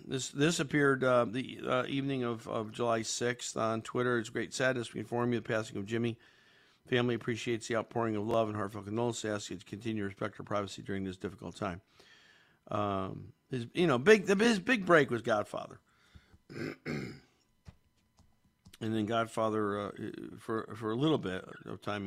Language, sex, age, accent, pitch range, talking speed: English, male, 50-69, American, 110-145 Hz, 180 wpm